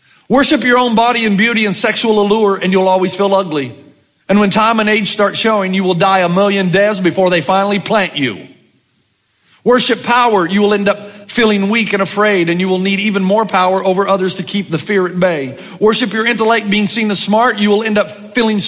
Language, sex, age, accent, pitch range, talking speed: English, male, 50-69, American, 145-210 Hz, 220 wpm